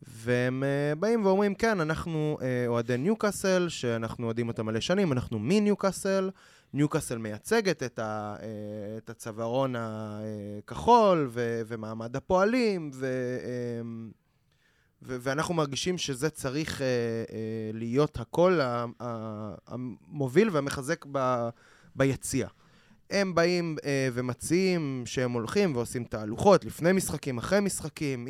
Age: 20-39